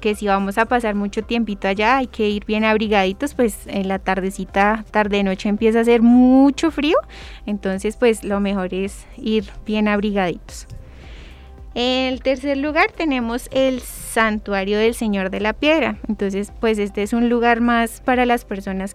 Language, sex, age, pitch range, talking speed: Spanish, female, 20-39, 200-235 Hz, 170 wpm